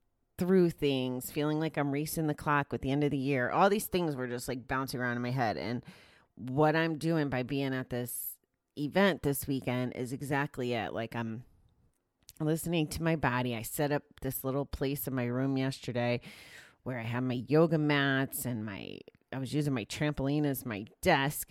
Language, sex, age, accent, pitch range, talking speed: English, female, 30-49, American, 125-160 Hz, 200 wpm